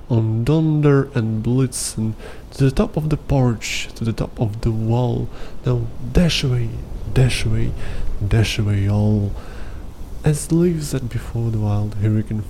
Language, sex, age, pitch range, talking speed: Ukrainian, male, 20-39, 100-130 Hz, 150 wpm